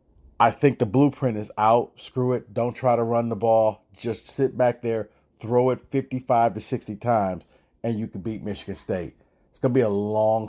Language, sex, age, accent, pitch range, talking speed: English, male, 40-59, American, 105-135 Hz, 205 wpm